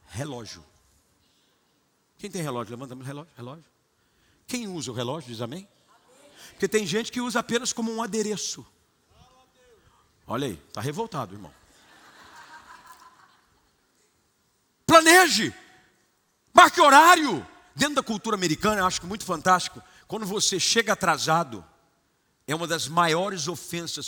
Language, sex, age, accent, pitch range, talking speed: Portuguese, male, 50-69, Brazilian, 140-215 Hz, 120 wpm